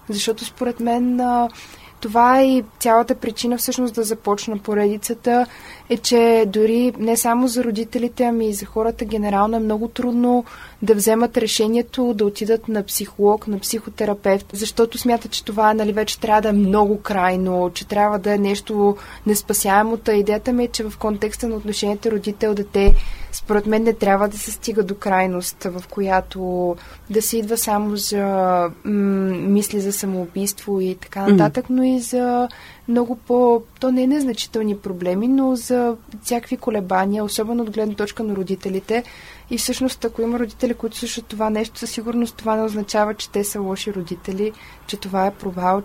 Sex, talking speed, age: female, 170 wpm, 20-39